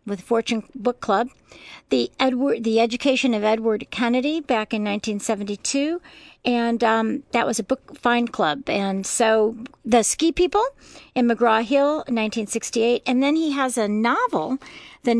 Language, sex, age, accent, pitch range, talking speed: English, female, 50-69, American, 210-265 Hz, 150 wpm